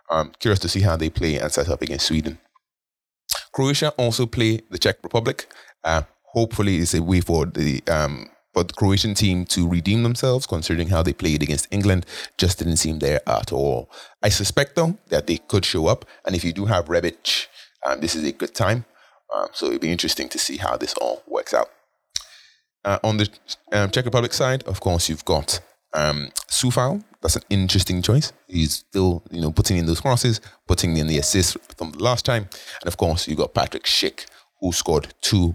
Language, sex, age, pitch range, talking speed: English, male, 30-49, 85-120 Hz, 205 wpm